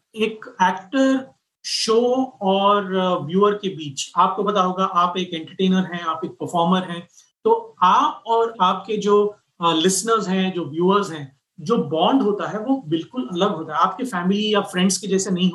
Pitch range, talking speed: 170-205 Hz, 180 wpm